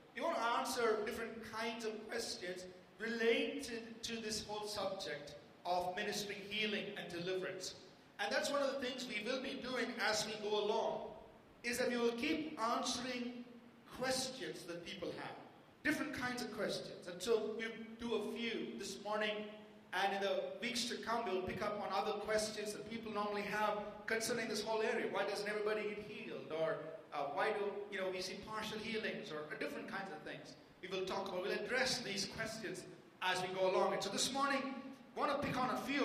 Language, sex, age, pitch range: English, male, 40-59, 195-240 Hz